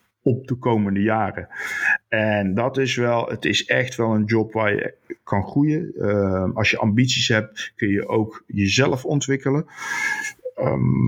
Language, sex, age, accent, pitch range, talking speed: Dutch, male, 50-69, Dutch, 105-130 Hz, 155 wpm